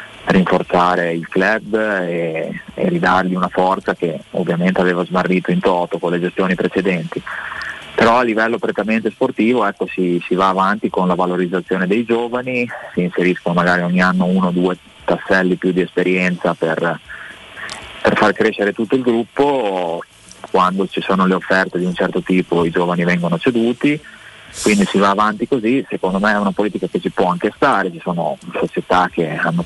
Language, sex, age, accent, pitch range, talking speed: Italian, male, 30-49, native, 90-100 Hz, 170 wpm